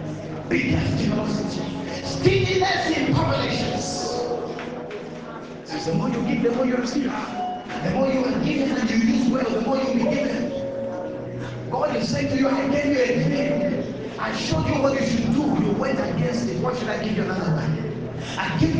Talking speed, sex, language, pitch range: 190 wpm, male, English, 225-280 Hz